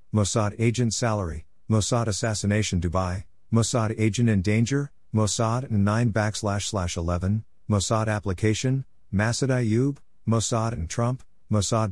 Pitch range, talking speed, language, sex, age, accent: 100-115 Hz, 115 wpm, English, male, 50-69, American